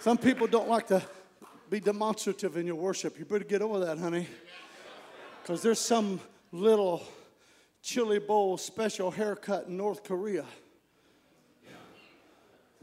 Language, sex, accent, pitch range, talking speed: English, male, American, 200-280 Hz, 130 wpm